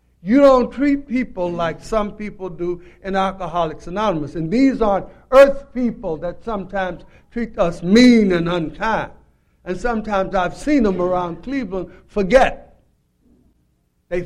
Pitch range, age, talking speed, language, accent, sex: 175-230 Hz, 60-79, 135 wpm, English, American, male